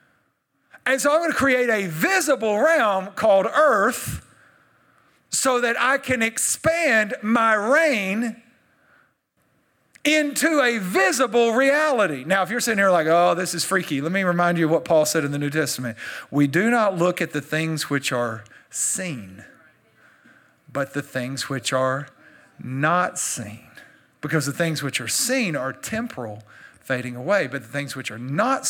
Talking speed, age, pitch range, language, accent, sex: 160 wpm, 50-69, 140-220 Hz, English, American, male